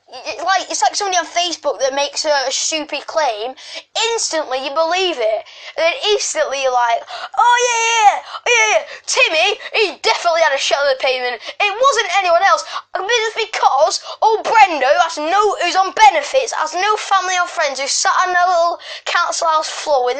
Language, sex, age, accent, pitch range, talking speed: English, female, 10-29, British, 300-405 Hz, 175 wpm